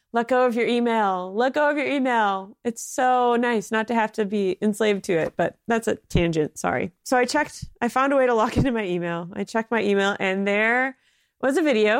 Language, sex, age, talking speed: English, female, 30-49, 235 wpm